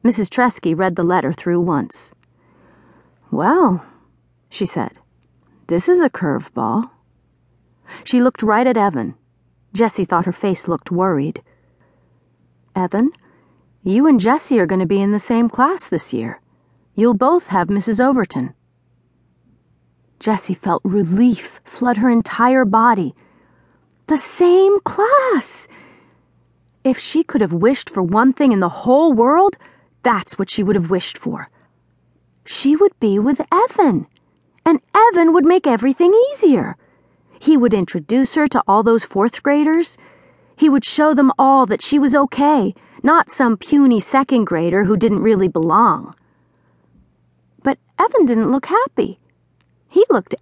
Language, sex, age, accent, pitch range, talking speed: English, female, 40-59, American, 180-275 Hz, 140 wpm